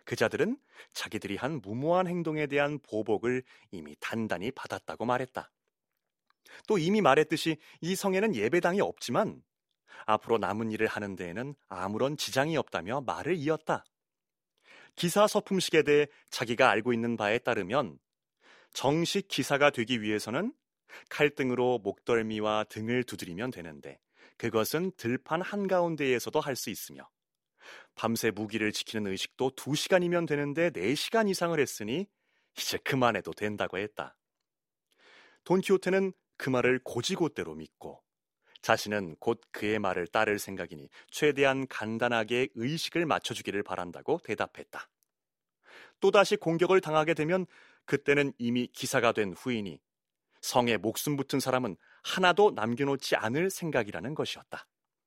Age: 30-49